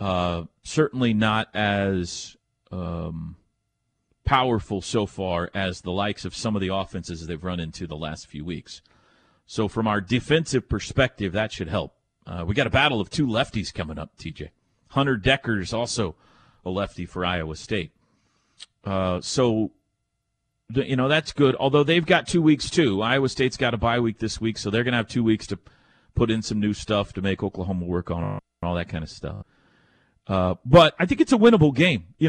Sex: male